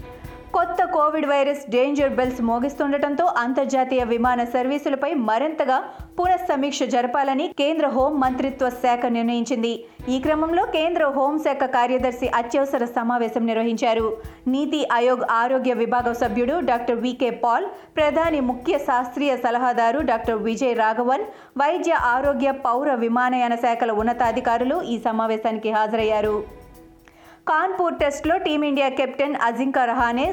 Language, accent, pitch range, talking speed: Telugu, native, 235-290 Hz, 110 wpm